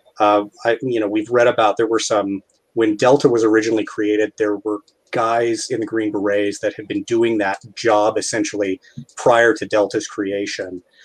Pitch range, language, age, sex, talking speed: 105-145 Hz, English, 30-49, male, 180 wpm